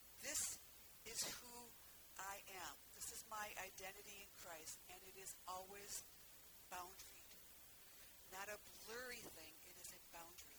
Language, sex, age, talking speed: English, female, 50-69, 135 wpm